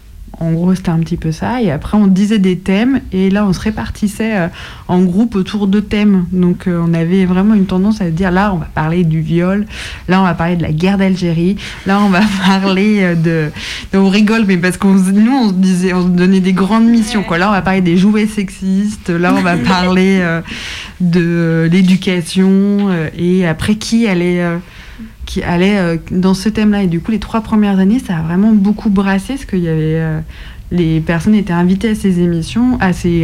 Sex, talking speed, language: female, 205 wpm, French